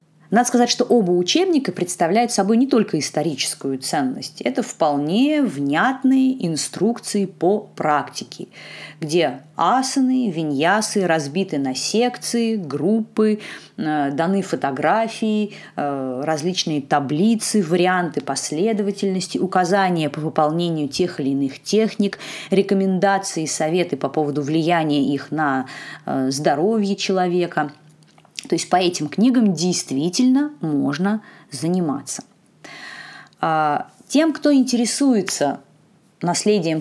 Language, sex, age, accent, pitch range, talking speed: Russian, female, 20-39, native, 155-215 Hz, 95 wpm